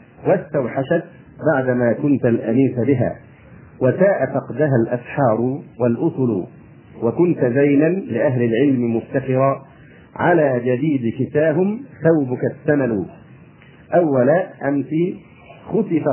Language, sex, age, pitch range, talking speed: Arabic, male, 50-69, 125-150 Hz, 80 wpm